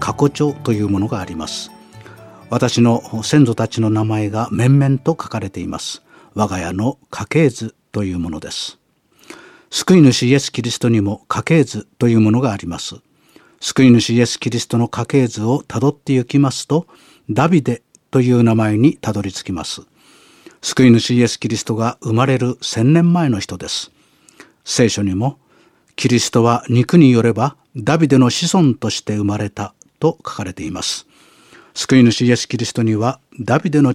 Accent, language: native, Japanese